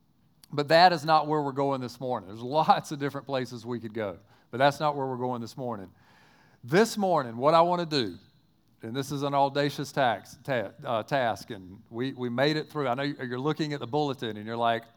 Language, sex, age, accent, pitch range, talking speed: English, male, 40-59, American, 120-155 Hz, 230 wpm